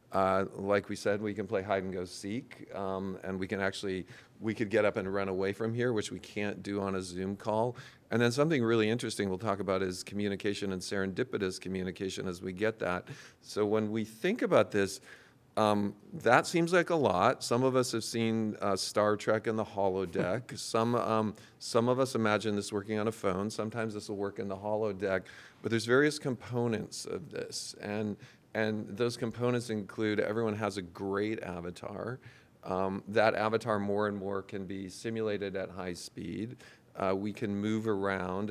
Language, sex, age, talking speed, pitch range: English, male, 40-59, 195 wpm, 100-115 Hz